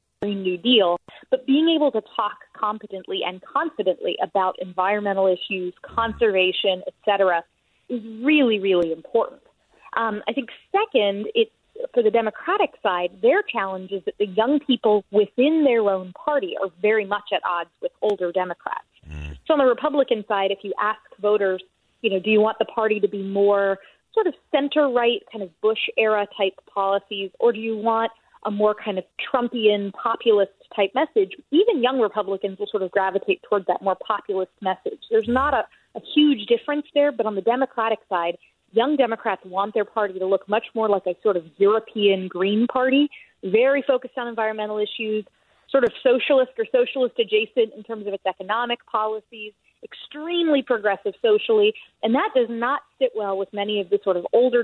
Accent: American